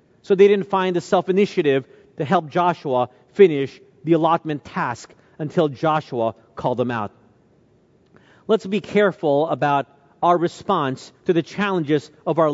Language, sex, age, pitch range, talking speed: English, male, 40-59, 140-200 Hz, 140 wpm